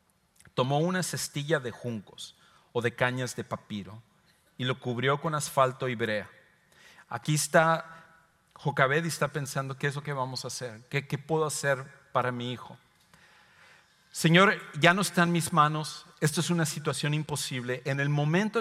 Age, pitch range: 50-69, 135-170 Hz